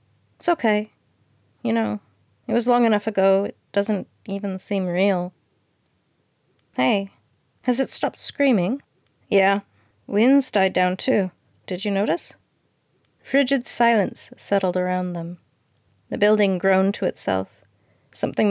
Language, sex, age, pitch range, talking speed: English, female, 30-49, 150-215 Hz, 125 wpm